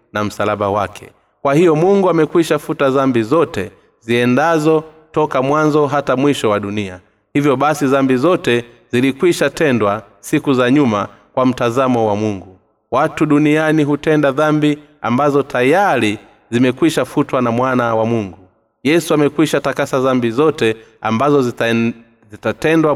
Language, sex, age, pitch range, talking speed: Swahili, male, 30-49, 115-150 Hz, 125 wpm